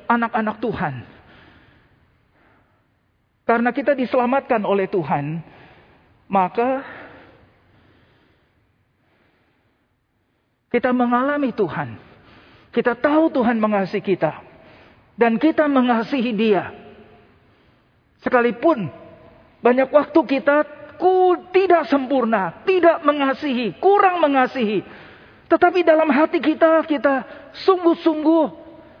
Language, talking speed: Indonesian, 75 wpm